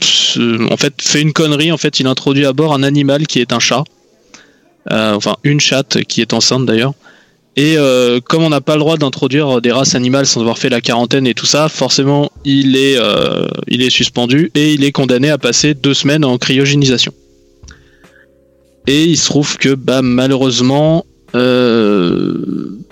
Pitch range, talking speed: 125-155 Hz, 185 wpm